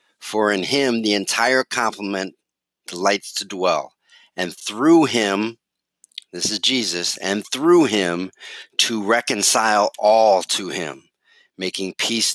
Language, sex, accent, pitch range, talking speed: English, male, American, 100-125 Hz, 120 wpm